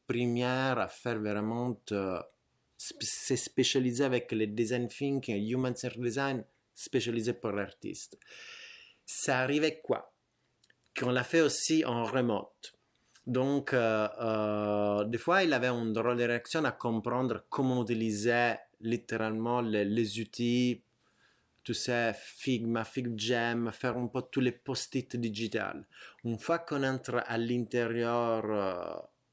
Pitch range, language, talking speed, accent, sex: 110-130 Hz, French, 130 wpm, Italian, male